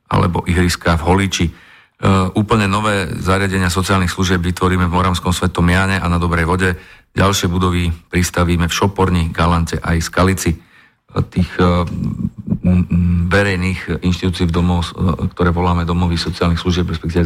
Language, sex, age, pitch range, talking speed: Slovak, male, 40-59, 85-90 Hz, 130 wpm